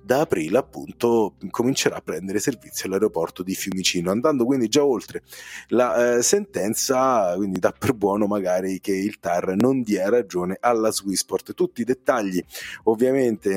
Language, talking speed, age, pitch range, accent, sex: Italian, 150 wpm, 30-49, 95-135 Hz, native, male